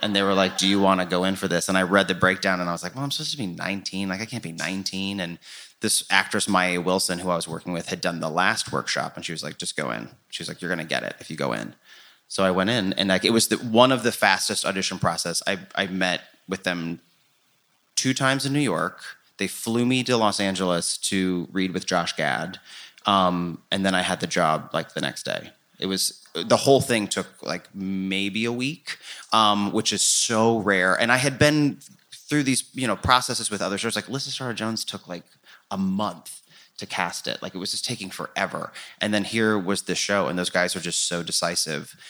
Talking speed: 240 wpm